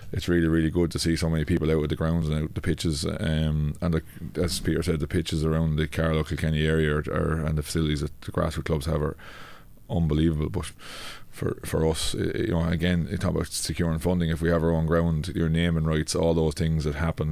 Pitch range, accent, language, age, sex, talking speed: 75-85 Hz, Irish, English, 20-39, male, 240 wpm